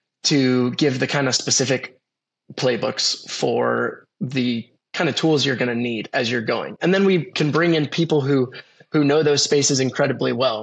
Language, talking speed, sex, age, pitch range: English, 185 wpm, male, 20-39, 125-145 Hz